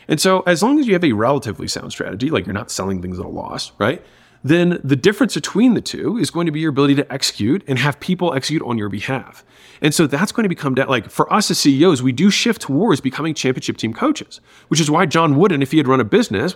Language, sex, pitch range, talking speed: English, male, 115-170 Hz, 255 wpm